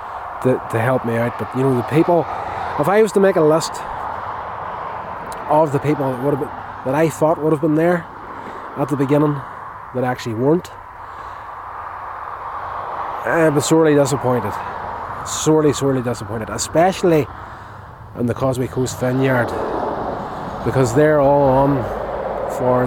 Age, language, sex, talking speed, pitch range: 20-39, English, male, 140 wpm, 110-145 Hz